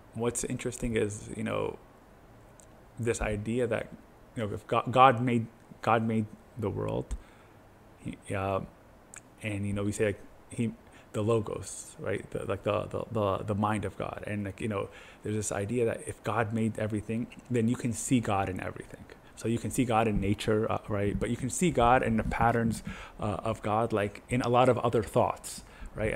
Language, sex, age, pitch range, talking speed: English, male, 20-39, 105-120 Hz, 195 wpm